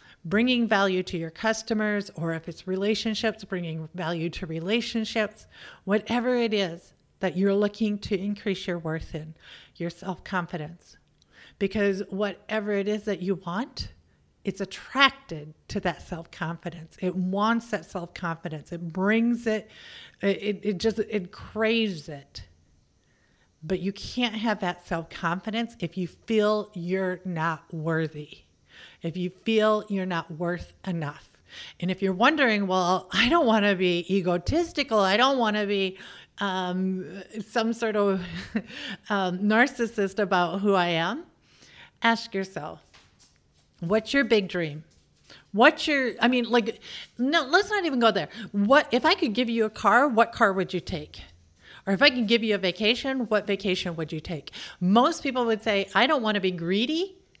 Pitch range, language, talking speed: 175-225 Hz, English, 155 wpm